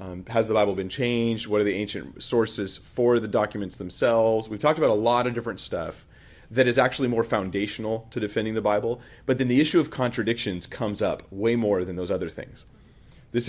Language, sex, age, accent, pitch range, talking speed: English, male, 30-49, American, 105-135 Hz, 210 wpm